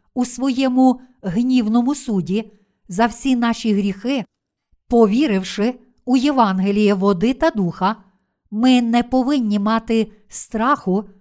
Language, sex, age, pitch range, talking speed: Ukrainian, female, 50-69, 200-245 Hz, 100 wpm